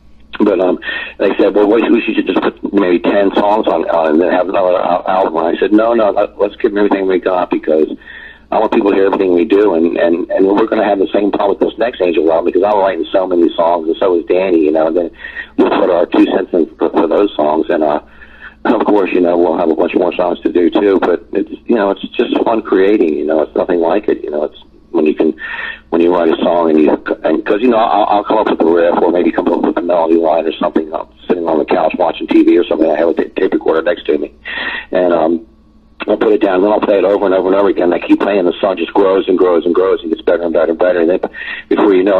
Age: 50-69